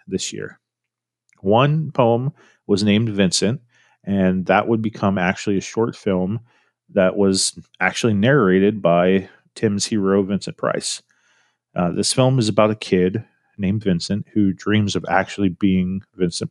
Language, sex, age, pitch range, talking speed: English, male, 30-49, 95-120 Hz, 140 wpm